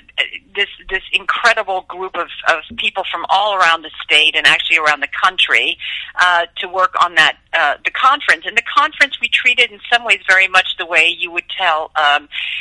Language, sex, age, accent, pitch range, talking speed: English, female, 50-69, American, 165-210 Hz, 195 wpm